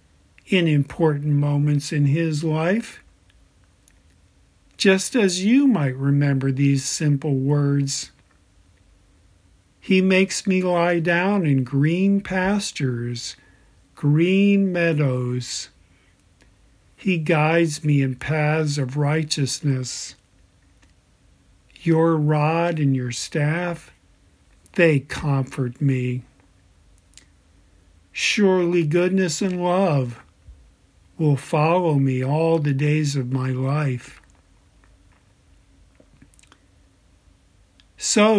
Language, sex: English, male